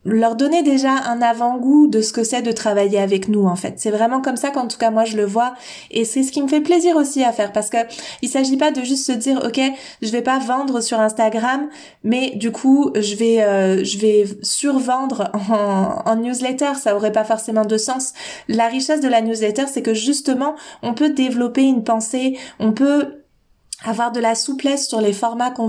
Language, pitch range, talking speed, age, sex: French, 210-265 Hz, 220 wpm, 20-39, female